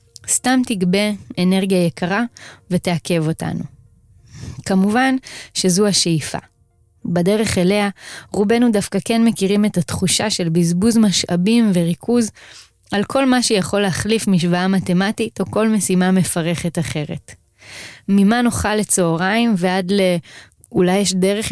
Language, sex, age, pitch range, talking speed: Hebrew, female, 20-39, 170-215 Hz, 115 wpm